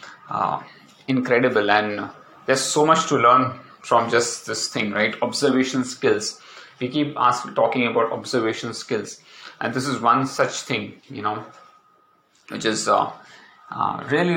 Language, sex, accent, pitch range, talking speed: English, male, Indian, 115-130 Hz, 145 wpm